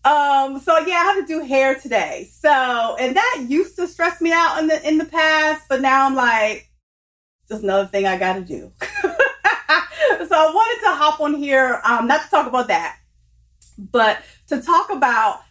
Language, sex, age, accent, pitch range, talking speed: English, female, 30-49, American, 220-290 Hz, 195 wpm